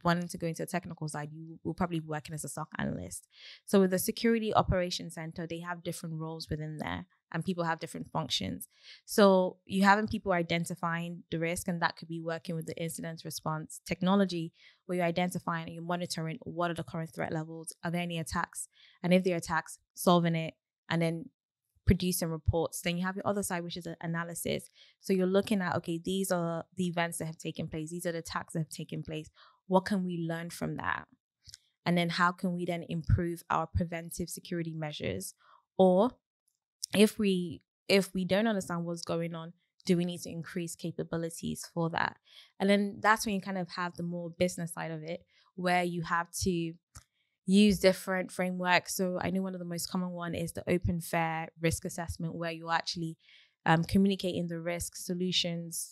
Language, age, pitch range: English, 20-39, 165-185 Hz